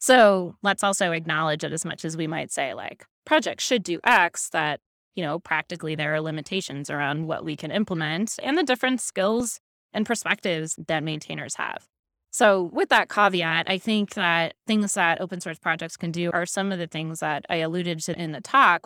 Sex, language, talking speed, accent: female, English, 200 wpm, American